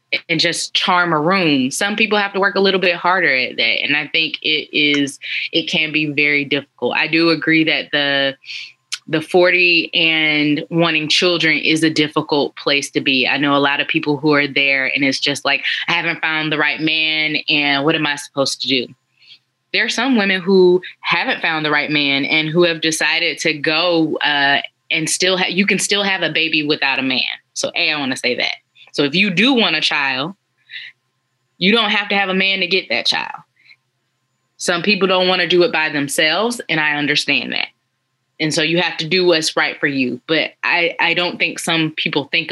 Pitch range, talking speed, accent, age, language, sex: 145-180 Hz, 215 wpm, American, 20-39, English, female